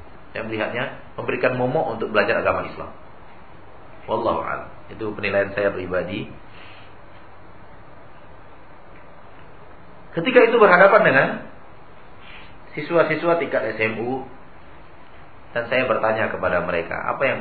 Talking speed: 95 wpm